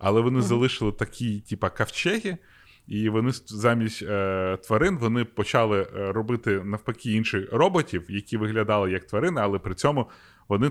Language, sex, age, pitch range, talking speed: Ukrainian, male, 20-39, 95-120 Hz, 140 wpm